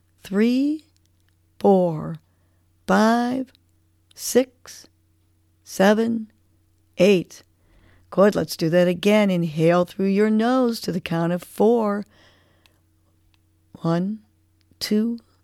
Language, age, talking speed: English, 40-59, 85 wpm